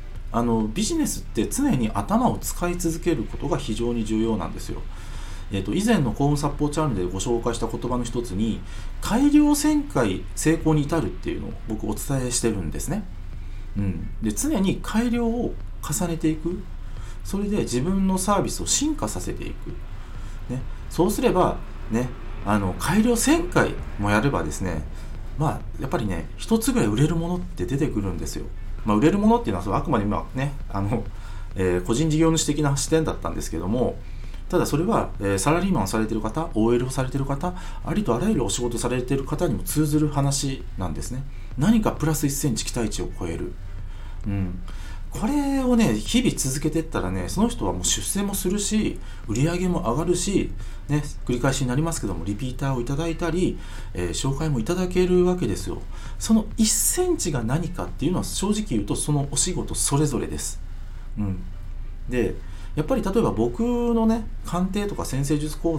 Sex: male